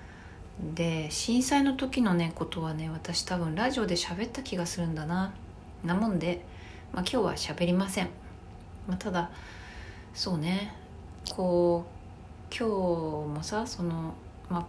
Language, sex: Japanese, female